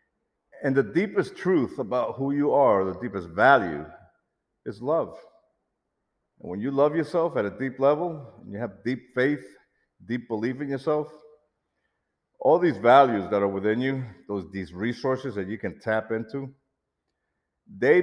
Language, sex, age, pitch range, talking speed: English, male, 50-69, 105-150 Hz, 155 wpm